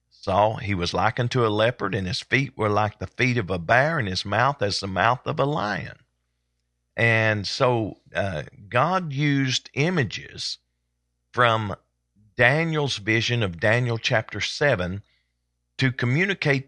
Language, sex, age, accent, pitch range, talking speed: English, male, 50-69, American, 95-125 Hz, 150 wpm